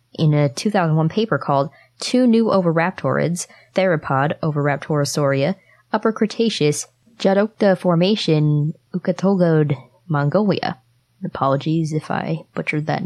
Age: 20-39